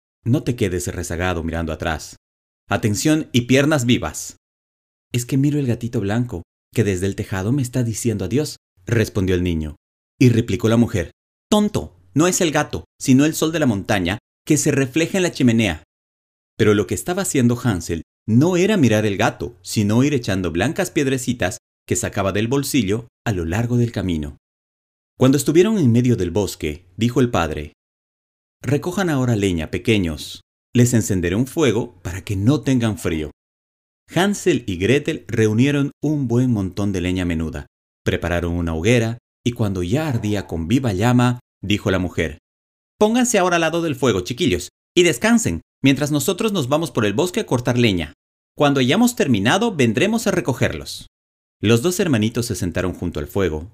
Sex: male